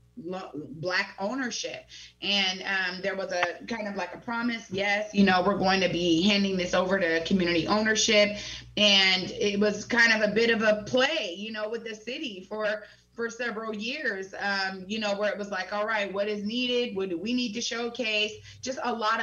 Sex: female